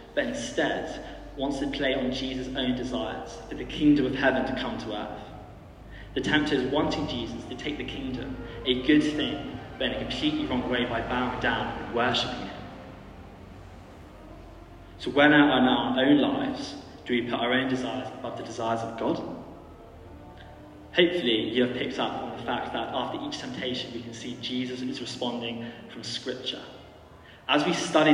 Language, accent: English, British